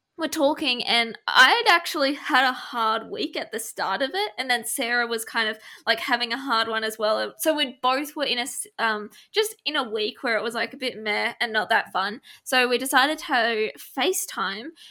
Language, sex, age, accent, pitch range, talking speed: English, female, 20-39, Australian, 225-280 Hz, 220 wpm